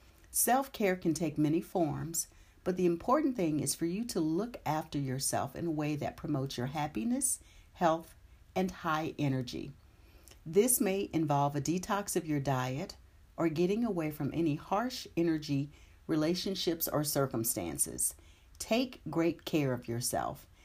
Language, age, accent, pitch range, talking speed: English, 50-69, American, 140-195 Hz, 145 wpm